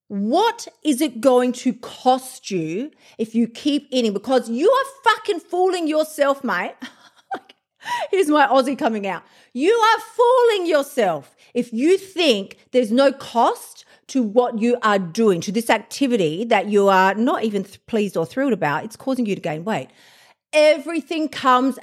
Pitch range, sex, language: 205-290 Hz, female, English